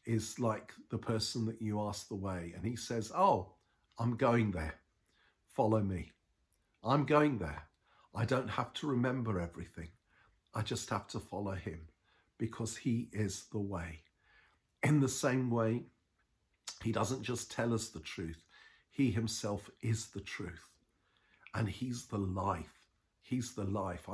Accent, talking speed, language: British, 150 wpm, English